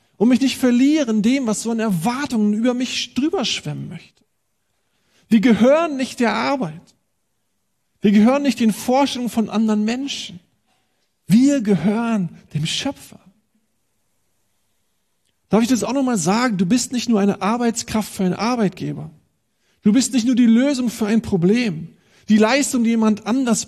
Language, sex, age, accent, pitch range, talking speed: German, male, 40-59, German, 180-245 Hz, 150 wpm